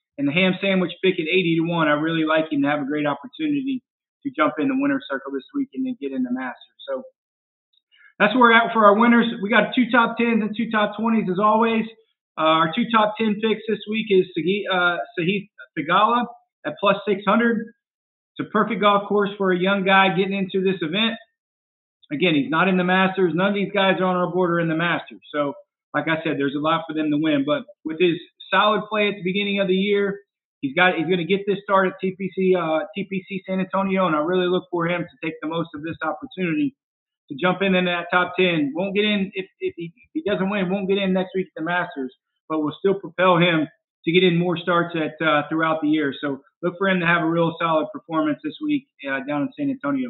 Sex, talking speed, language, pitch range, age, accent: male, 240 wpm, English, 165-215 Hz, 40-59, American